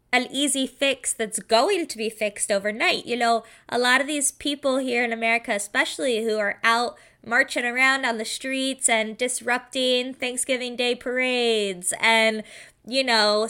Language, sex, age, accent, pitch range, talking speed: English, female, 20-39, American, 230-280 Hz, 155 wpm